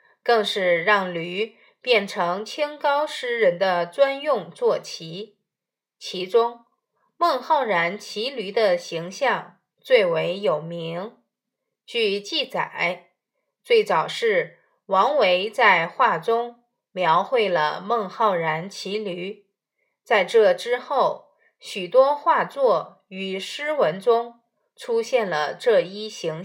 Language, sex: Chinese, female